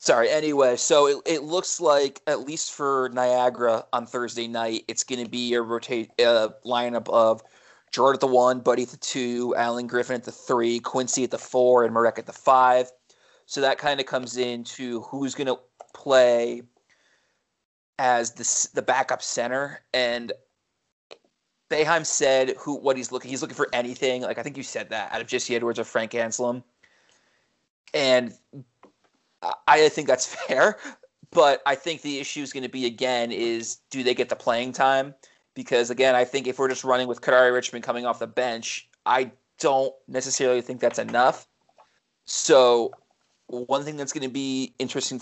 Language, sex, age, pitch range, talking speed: English, male, 30-49, 120-135 Hz, 180 wpm